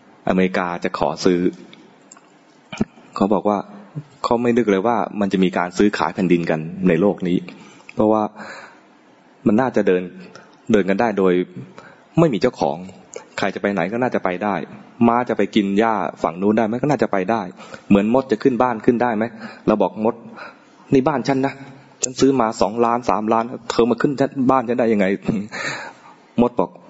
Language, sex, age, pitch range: English, male, 20-39, 95-125 Hz